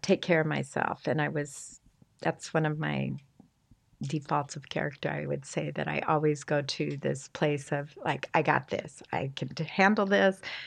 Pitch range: 135-155 Hz